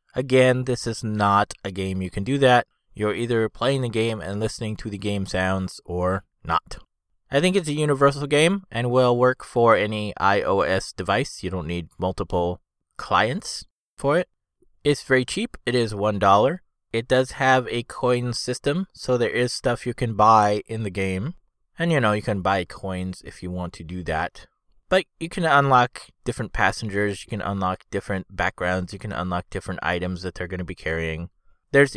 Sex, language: male, English